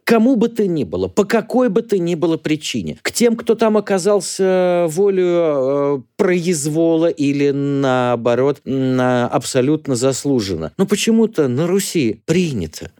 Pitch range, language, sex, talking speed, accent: 125-180 Hz, Russian, male, 135 wpm, native